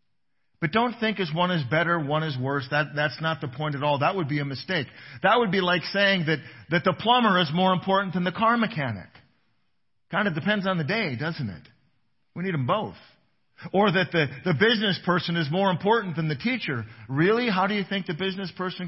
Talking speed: 225 wpm